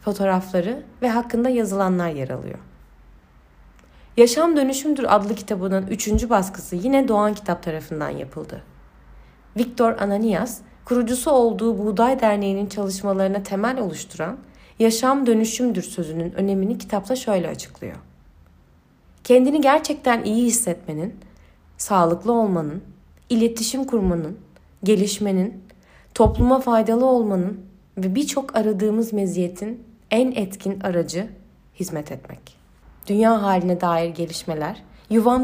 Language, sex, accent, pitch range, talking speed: Turkish, female, native, 175-225 Hz, 100 wpm